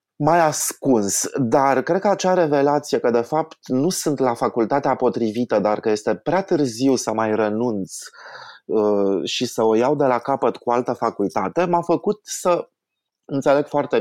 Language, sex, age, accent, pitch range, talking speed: Romanian, male, 20-39, native, 105-135 Hz, 165 wpm